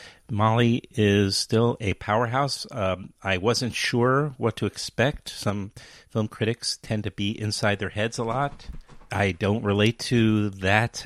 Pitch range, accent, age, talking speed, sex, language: 95-120 Hz, American, 30-49, 150 wpm, male, English